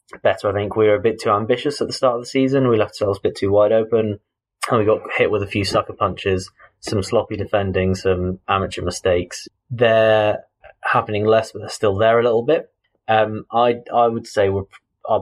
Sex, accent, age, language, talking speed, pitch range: male, British, 20-39, English, 215 wpm, 95-110 Hz